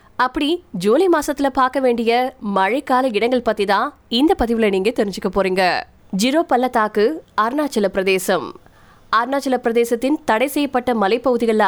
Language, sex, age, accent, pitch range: Tamil, female, 20-39, native, 210-275 Hz